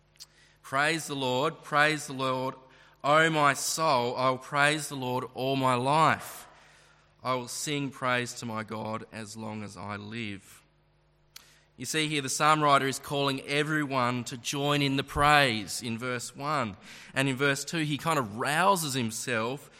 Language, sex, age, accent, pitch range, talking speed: English, male, 20-39, Australian, 115-145 Hz, 165 wpm